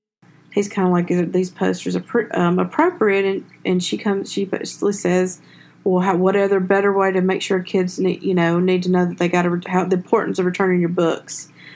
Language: English